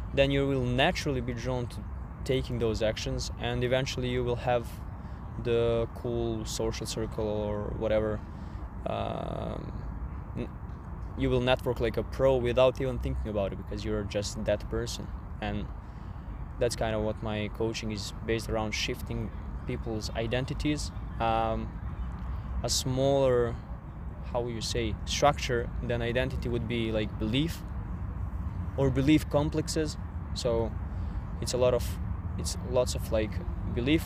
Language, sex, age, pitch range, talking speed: English, male, 20-39, 90-125 Hz, 135 wpm